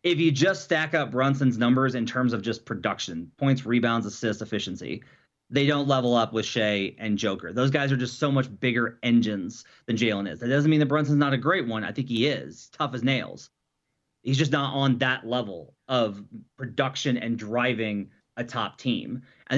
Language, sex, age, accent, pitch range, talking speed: English, male, 30-49, American, 115-145 Hz, 200 wpm